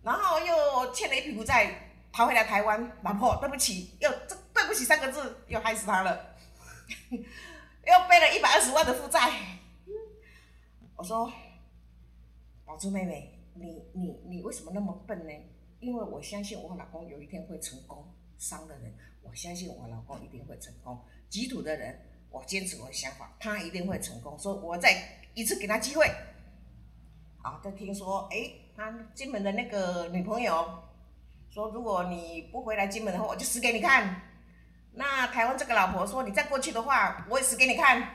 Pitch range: 165-240 Hz